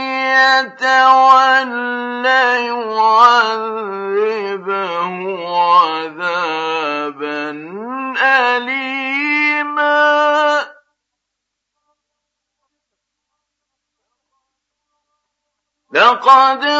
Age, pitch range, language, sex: 50-69, 225-295 Hz, Arabic, male